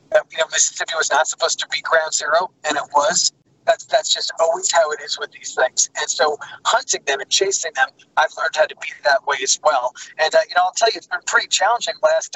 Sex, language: male, English